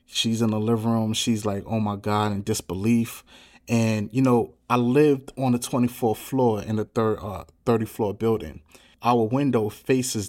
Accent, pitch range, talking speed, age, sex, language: American, 105-125 Hz, 180 wpm, 30-49, male, English